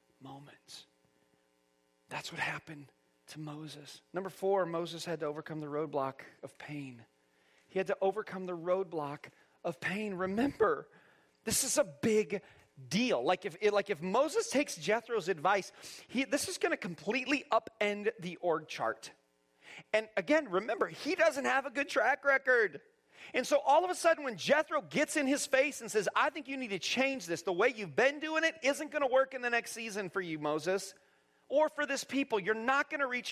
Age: 30-49